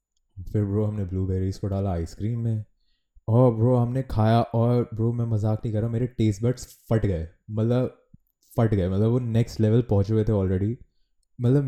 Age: 20-39